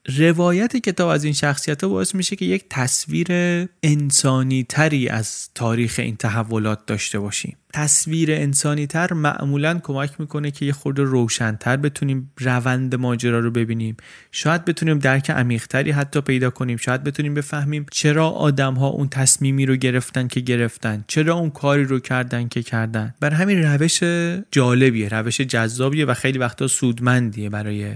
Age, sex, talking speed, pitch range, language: 30-49, male, 155 wpm, 125-155 Hz, Persian